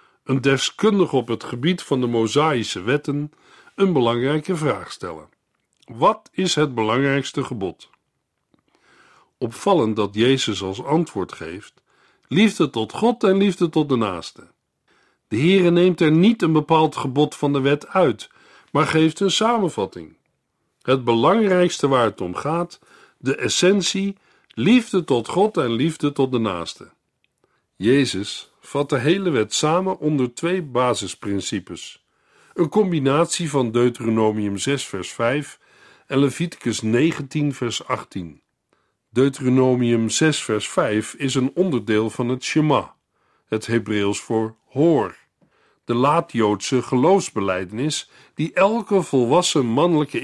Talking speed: 125 wpm